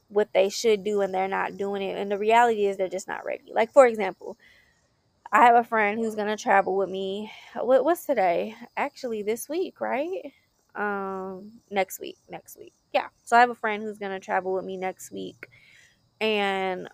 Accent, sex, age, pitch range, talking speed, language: American, female, 20-39, 195-225 Hz, 190 wpm, English